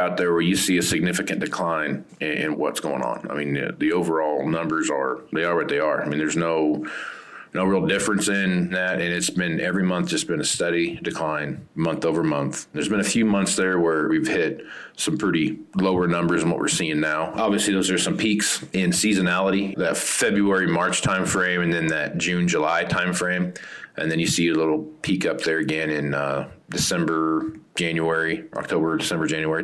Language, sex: English, male